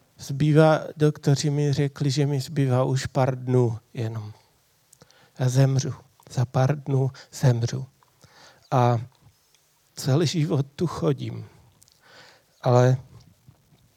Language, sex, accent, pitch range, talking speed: Czech, male, native, 130-150 Hz, 100 wpm